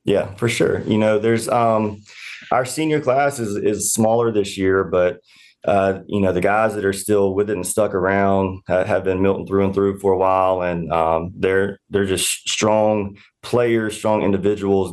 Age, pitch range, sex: 30-49, 95-105 Hz, male